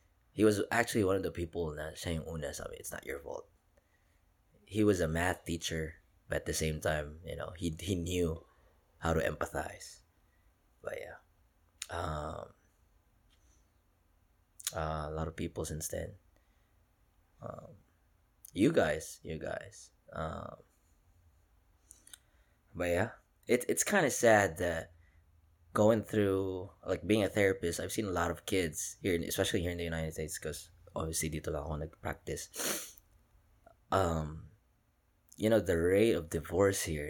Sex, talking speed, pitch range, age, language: male, 145 wpm, 80-95 Hz, 20-39, Filipino